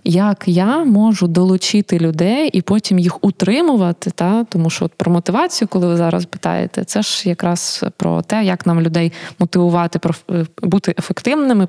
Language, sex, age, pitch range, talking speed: Ukrainian, female, 20-39, 175-210 Hz, 155 wpm